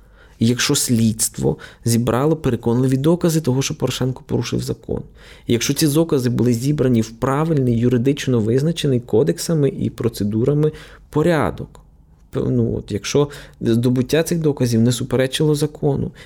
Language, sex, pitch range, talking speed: Ukrainian, male, 115-145 Hz, 125 wpm